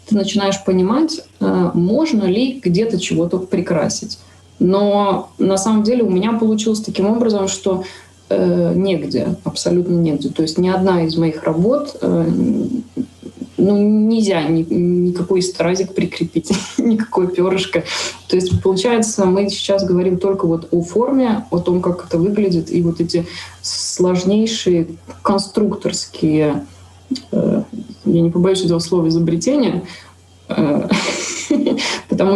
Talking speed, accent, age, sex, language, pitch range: 120 wpm, native, 20-39, female, Russian, 170-210 Hz